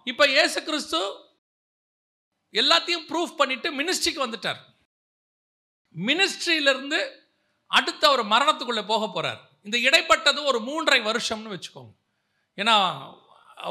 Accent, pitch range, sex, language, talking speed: native, 205-285 Hz, male, Tamil, 90 wpm